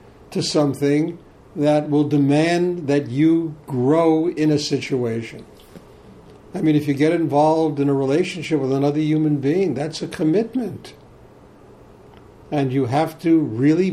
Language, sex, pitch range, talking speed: English, male, 135-160 Hz, 140 wpm